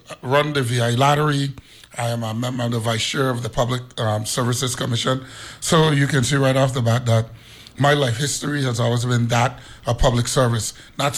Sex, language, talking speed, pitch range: male, English, 205 wpm, 120-140 Hz